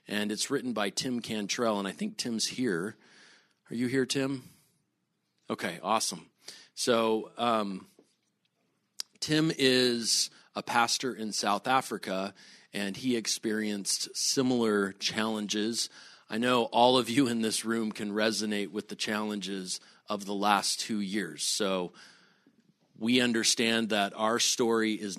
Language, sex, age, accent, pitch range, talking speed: English, male, 40-59, American, 100-120 Hz, 135 wpm